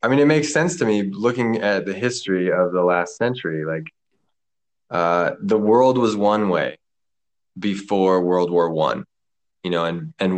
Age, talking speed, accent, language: 20-39, 175 wpm, American, English